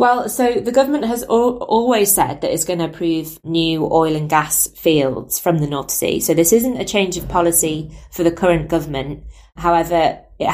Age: 20-39